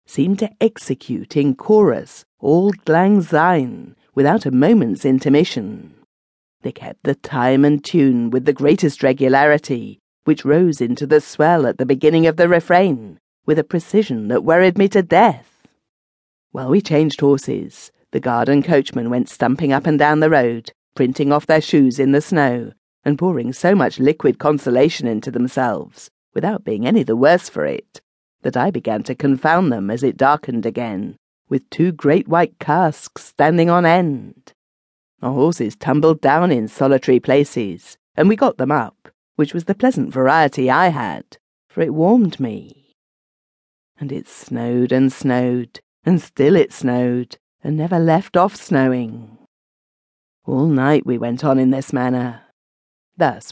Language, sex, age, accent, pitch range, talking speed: English, female, 50-69, British, 125-165 Hz, 160 wpm